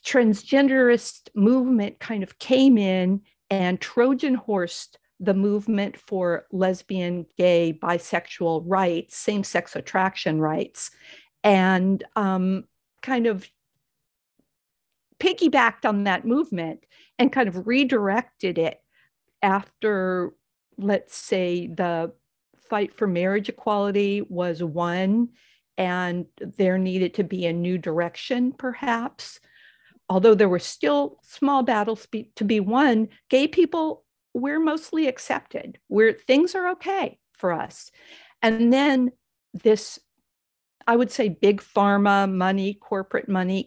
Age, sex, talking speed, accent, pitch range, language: 50-69, female, 110 wpm, American, 185-240 Hz, English